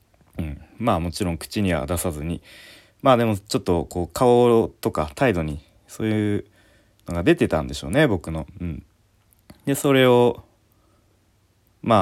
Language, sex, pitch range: Japanese, male, 85-105 Hz